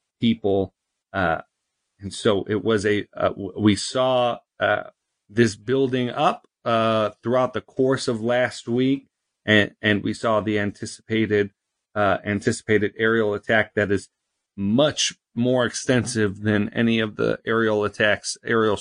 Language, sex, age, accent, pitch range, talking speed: English, male, 40-59, American, 105-125 Hz, 135 wpm